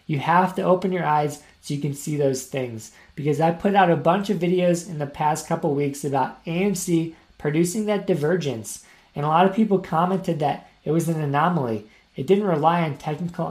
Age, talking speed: 20-39, 205 wpm